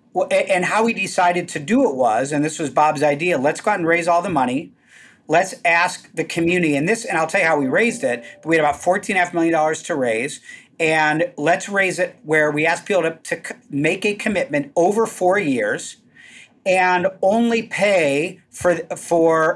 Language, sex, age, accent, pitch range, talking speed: English, male, 40-59, American, 150-185 Hz, 200 wpm